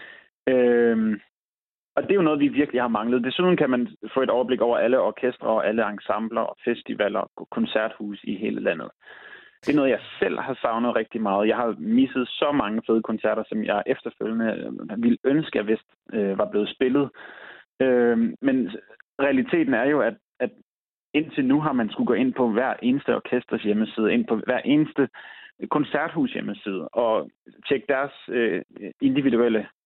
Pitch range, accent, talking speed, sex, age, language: 110-150 Hz, native, 170 wpm, male, 30-49, Danish